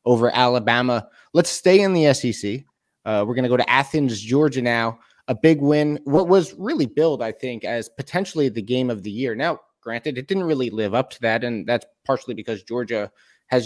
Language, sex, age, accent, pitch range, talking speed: English, male, 20-39, American, 120-140 Hz, 200 wpm